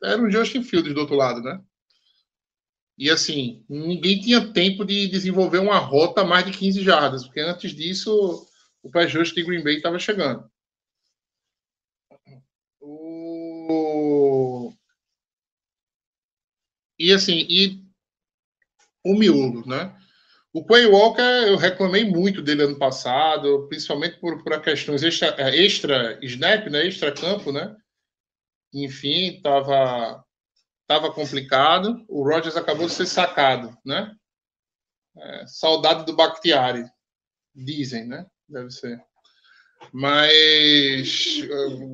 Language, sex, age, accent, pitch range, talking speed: Portuguese, male, 20-39, Brazilian, 140-195 Hz, 110 wpm